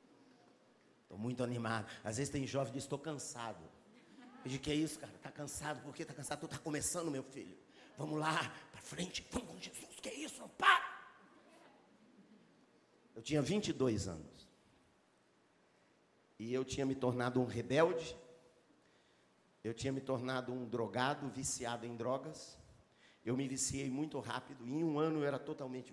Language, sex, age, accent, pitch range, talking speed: Portuguese, male, 50-69, Brazilian, 125-180 Hz, 165 wpm